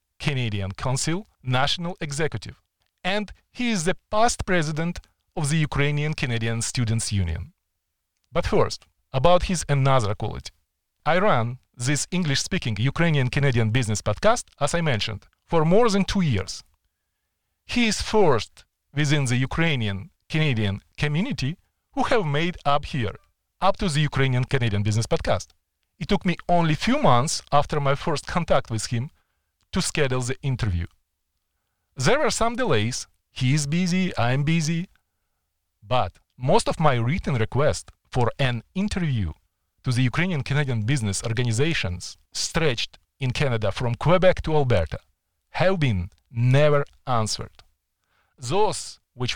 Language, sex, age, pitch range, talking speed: Ukrainian, male, 40-59, 110-165 Hz, 130 wpm